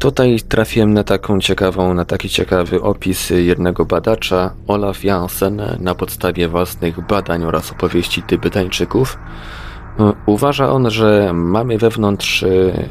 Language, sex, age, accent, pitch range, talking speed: Polish, male, 20-39, native, 85-105 Hz, 105 wpm